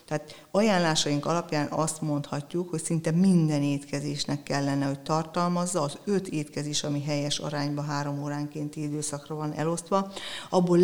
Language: Hungarian